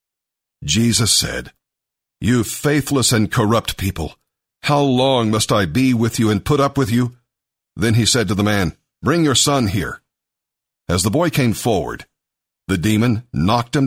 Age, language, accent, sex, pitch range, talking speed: 50-69, English, American, male, 105-130 Hz, 165 wpm